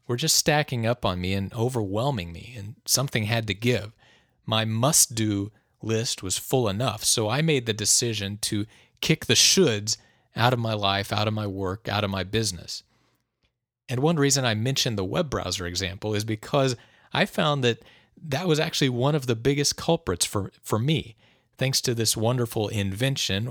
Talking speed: 180 wpm